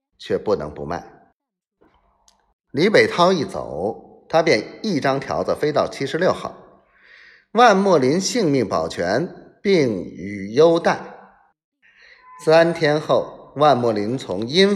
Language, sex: Chinese, male